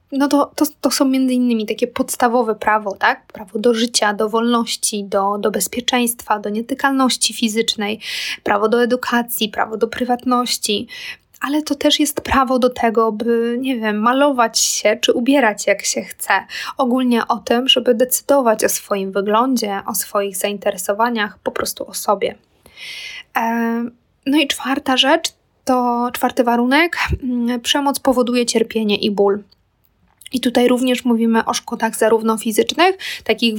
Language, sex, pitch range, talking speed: Polish, female, 215-255 Hz, 145 wpm